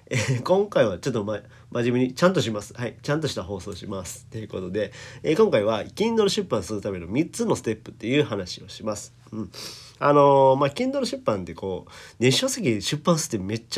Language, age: Japanese, 40-59